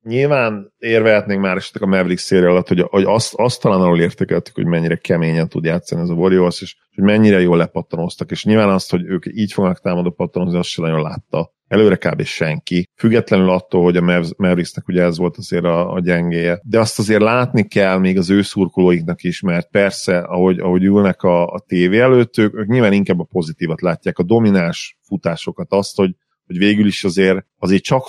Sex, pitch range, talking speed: male, 85-105 Hz, 190 wpm